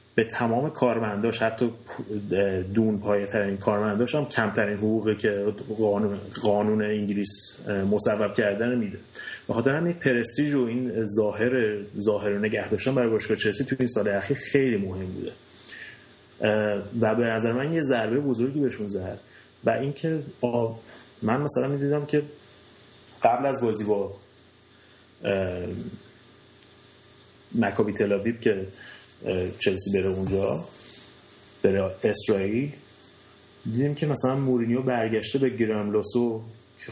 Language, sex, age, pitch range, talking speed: Persian, male, 30-49, 105-130 Hz, 120 wpm